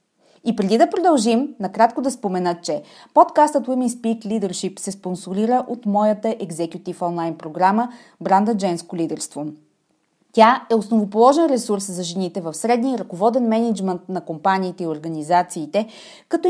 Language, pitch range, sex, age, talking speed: Bulgarian, 180-255 Hz, female, 30-49, 140 wpm